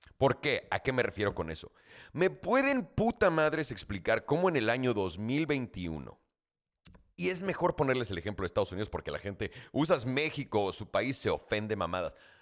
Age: 40-59